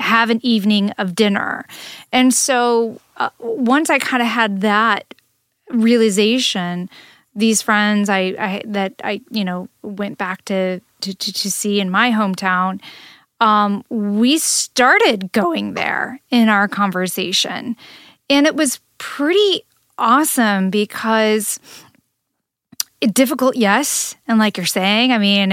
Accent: American